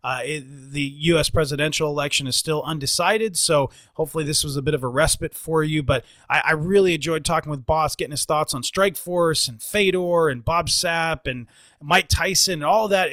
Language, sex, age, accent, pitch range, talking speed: English, male, 30-49, American, 135-165 Hz, 205 wpm